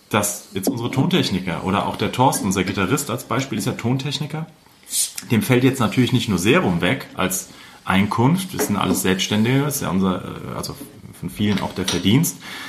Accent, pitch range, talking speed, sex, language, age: German, 105-140 Hz, 180 wpm, male, German, 30-49